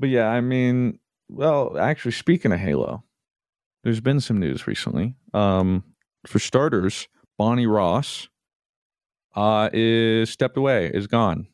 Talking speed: 130 wpm